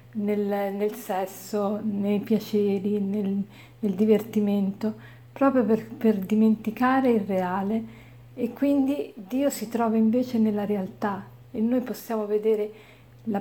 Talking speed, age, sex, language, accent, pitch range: 120 wpm, 50-69, female, Italian, native, 195-225 Hz